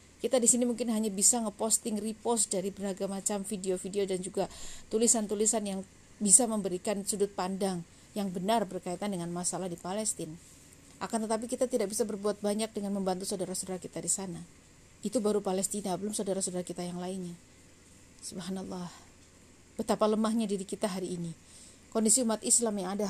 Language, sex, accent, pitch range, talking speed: Indonesian, female, native, 185-235 Hz, 155 wpm